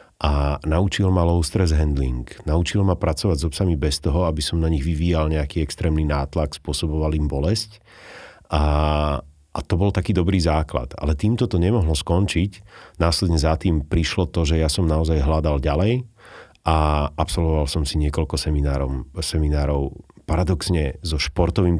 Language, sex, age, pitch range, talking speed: Slovak, male, 40-59, 75-90 Hz, 155 wpm